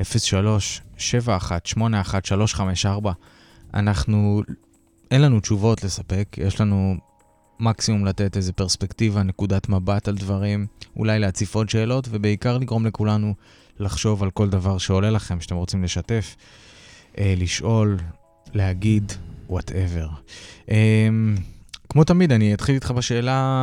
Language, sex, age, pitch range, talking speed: Hebrew, male, 20-39, 95-110 Hz, 110 wpm